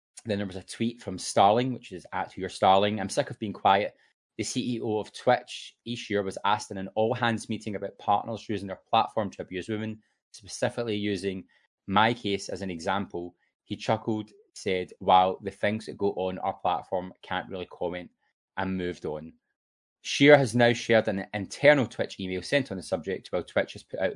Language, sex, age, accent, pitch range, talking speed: English, male, 20-39, British, 95-115 Hz, 200 wpm